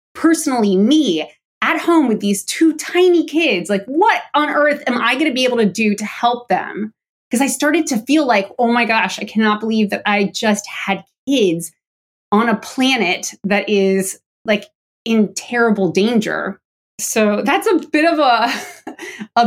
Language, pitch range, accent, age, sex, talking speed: English, 205-285 Hz, American, 20-39, female, 175 wpm